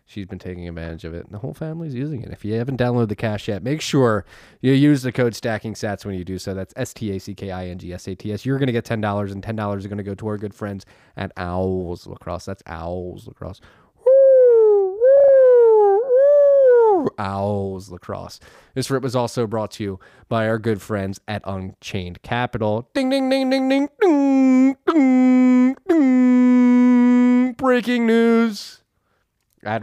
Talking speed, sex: 195 wpm, male